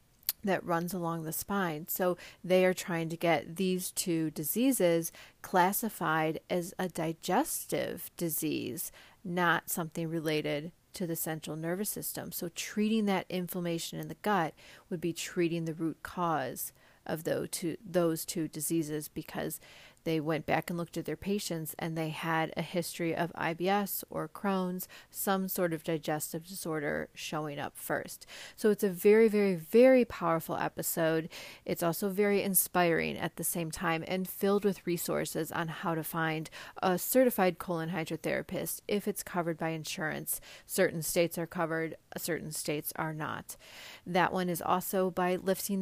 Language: English